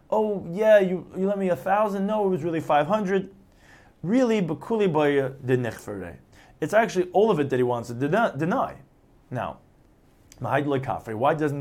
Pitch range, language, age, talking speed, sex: 130-195 Hz, English, 30-49, 145 wpm, male